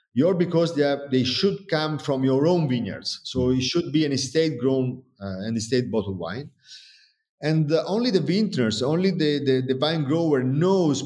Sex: male